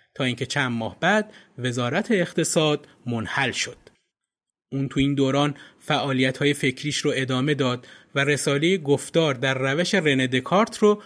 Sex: male